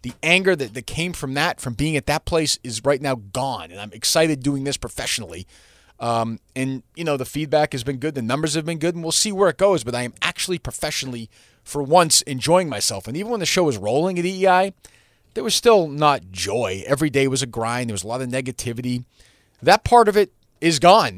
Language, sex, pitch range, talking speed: English, male, 115-155 Hz, 230 wpm